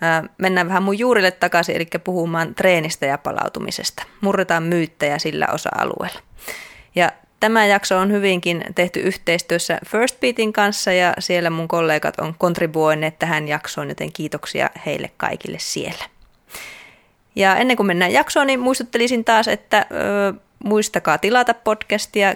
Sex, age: female, 20-39